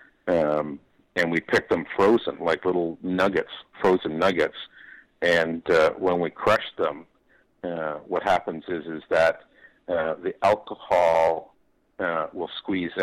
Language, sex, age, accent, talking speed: English, male, 50-69, American, 135 wpm